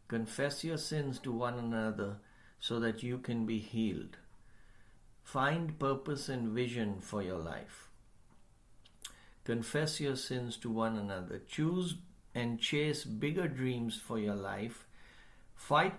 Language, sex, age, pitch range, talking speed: English, male, 60-79, 115-145 Hz, 130 wpm